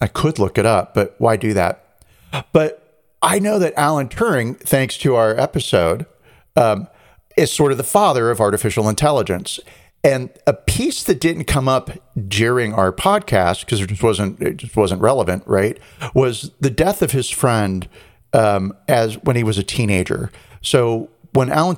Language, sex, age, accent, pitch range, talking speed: English, male, 50-69, American, 100-130 Hz, 175 wpm